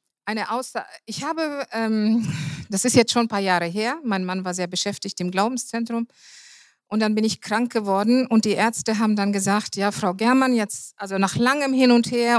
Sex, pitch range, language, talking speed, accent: female, 200-240 Hz, German, 205 wpm, German